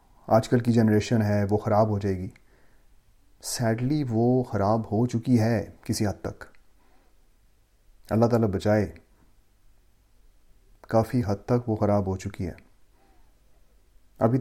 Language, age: Urdu, 30-49